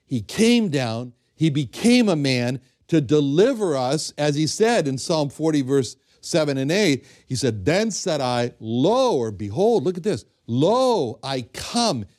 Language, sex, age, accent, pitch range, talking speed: English, male, 60-79, American, 125-180 Hz, 165 wpm